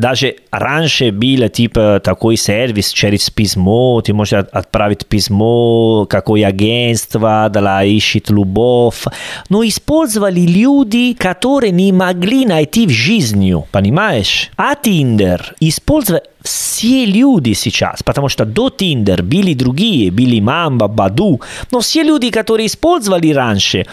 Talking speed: 125 wpm